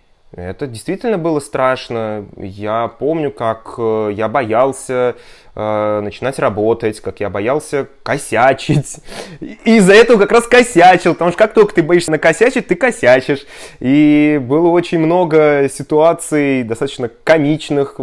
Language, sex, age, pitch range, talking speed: Russian, male, 20-39, 105-145 Hz, 125 wpm